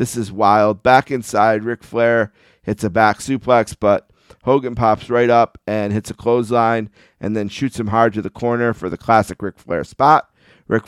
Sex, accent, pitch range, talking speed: male, American, 105-125 Hz, 195 wpm